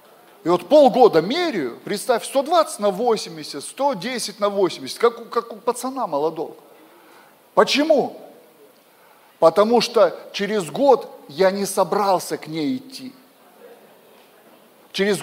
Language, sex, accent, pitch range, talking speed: Russian, male, native, 175-255 Hz, 115 wpm